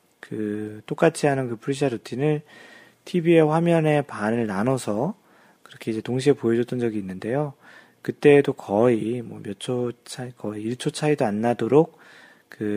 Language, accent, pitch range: Korean, native, 110-150 Hz